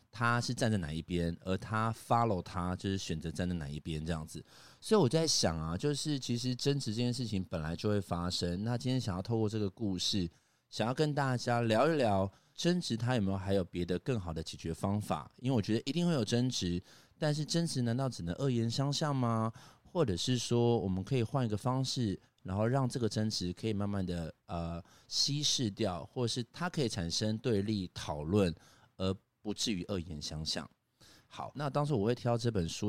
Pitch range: 95-125 Hz